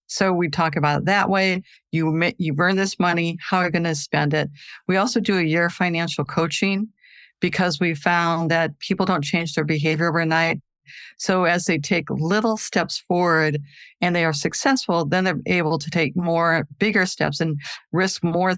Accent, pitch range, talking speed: American, 160-190 Hz, 190 wpm